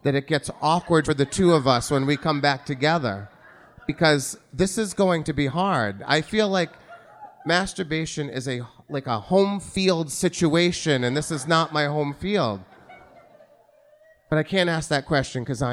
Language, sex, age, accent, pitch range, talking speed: English, male, 30-49, American, 115-150 Hz, 175 wpm